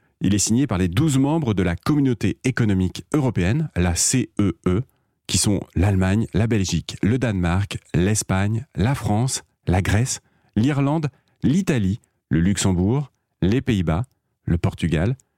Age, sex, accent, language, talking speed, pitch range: 40-59, male, French, French, 135 wpm, 95-130 Hz